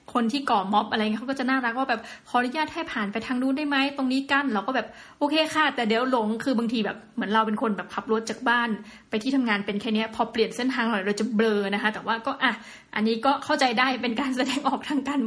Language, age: Thai, 20-39